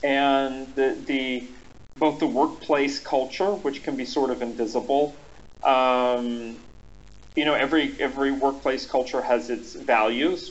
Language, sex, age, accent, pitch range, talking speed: English, male, 40-59, American, 125-145 Hz, 130 wpm